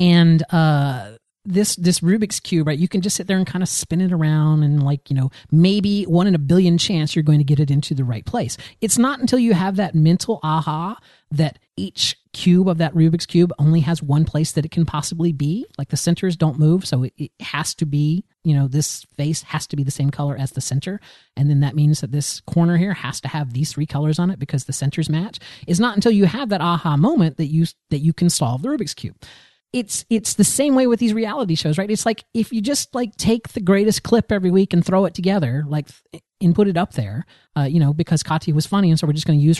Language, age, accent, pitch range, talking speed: English, 30-49, American, 150-200 Hz, 255 wpm